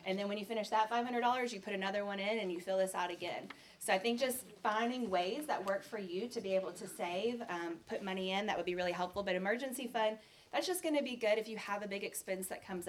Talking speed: 275 wpm